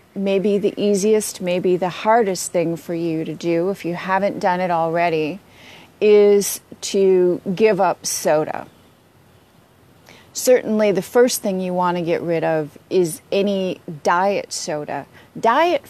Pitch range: 170-210 Hz